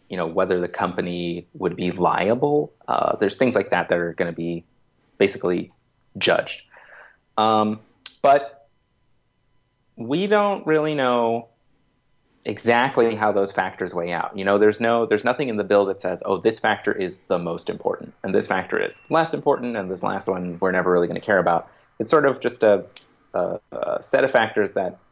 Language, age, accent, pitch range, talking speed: English, 30-49, American, 90-125 Hz, 185 wpm